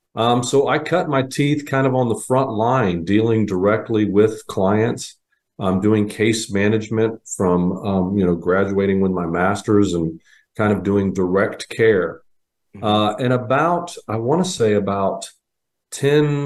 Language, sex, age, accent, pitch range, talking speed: English, male, 40-59, American, 95-110 Hz, 155 wpm